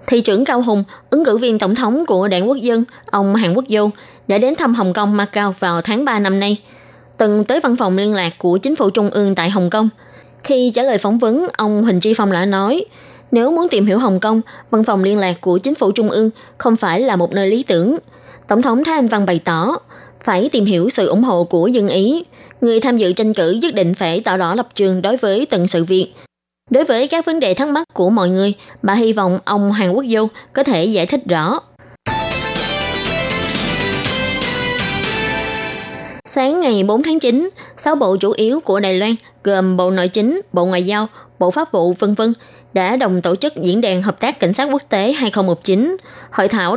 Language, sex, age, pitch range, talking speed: Vietnamese, female, 20-39, 190-250 Hz, 215 wpm